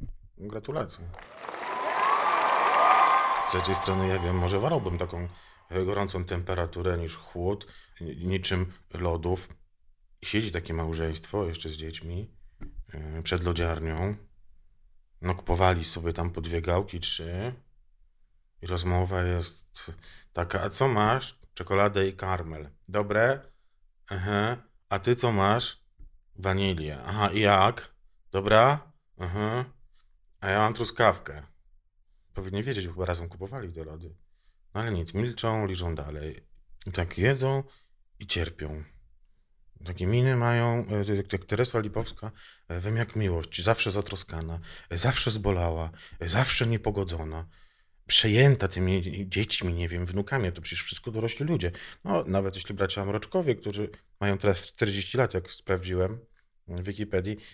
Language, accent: Polish, native